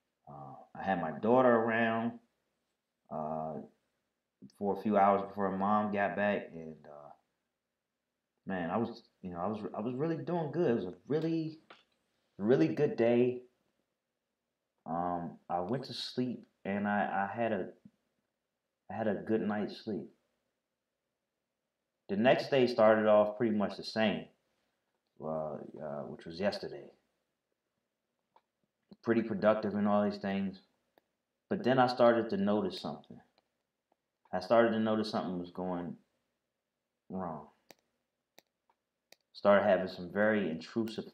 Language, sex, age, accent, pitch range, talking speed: English, male, 30-49, American, 90-115 Hz, 130 wpm